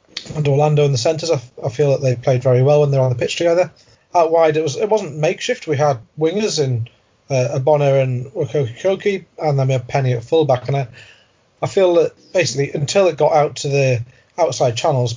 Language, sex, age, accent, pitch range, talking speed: English, male, 30-49, British, 125-155 Hz, 220 wpm